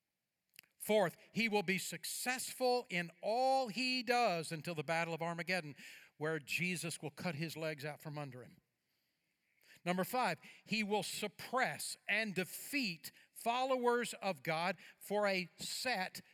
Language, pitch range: English, 170-220 Hz